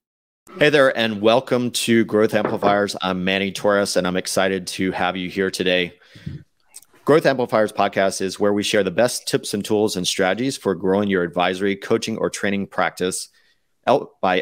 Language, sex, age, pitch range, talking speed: English, male, 30-49, 95-115 Hz, 170 wpm